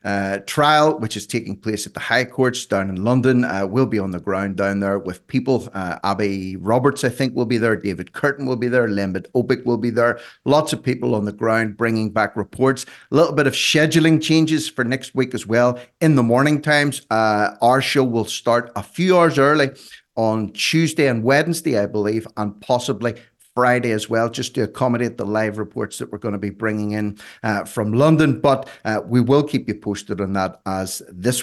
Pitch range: 100-130 Hz